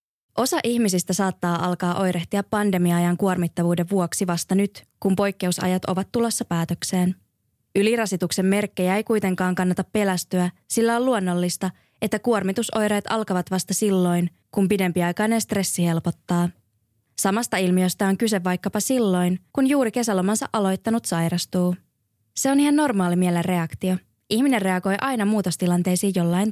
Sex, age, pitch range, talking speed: female, 20-39, 180-210 Hz, 125 wpm